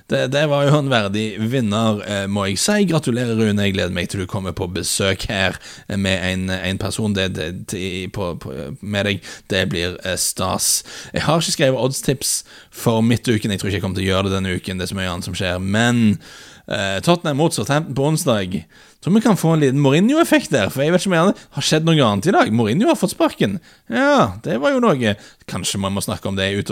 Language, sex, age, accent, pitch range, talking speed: English, male, 30-49, Norwegian, 100-125 Hz, 235 wpm